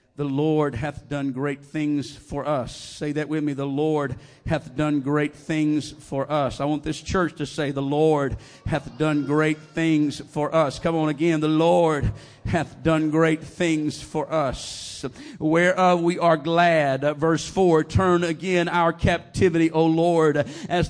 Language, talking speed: English, 165 wpm